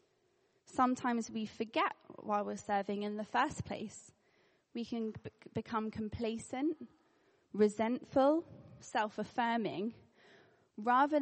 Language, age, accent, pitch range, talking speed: English, 20-39, British, 200-250 Hz, 90 wpm